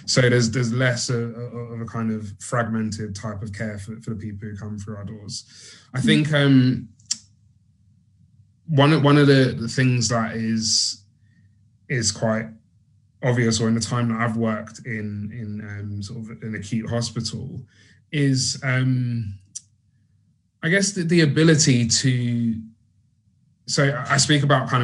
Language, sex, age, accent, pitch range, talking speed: English, male, 20-39, British, 110-130 Hz, 150 wpm